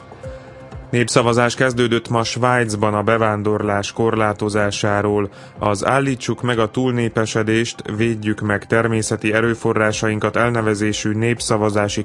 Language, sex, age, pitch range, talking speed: Slovak, male, 30-49, 105-115 Hz, 90 wpm